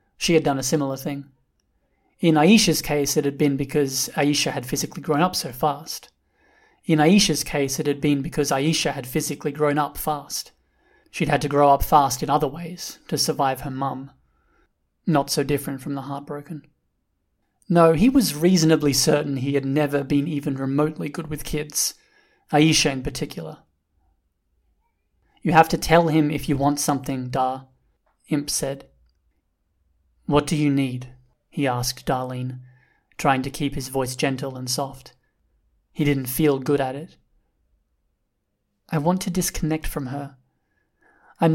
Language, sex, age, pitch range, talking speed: English, male, 30-49, 130-160 Hz, 155 wpm